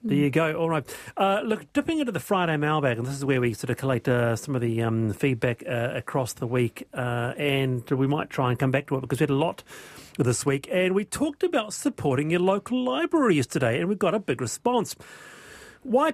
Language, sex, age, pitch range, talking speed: English, male, 40-59, 125-180 Hz, 230 wpm